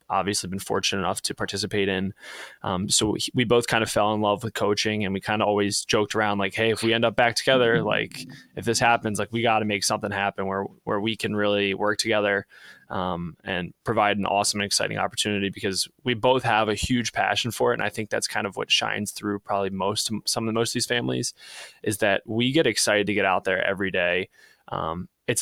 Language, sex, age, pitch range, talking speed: English, male, 20-39, 100-115 Hz, 235 wpm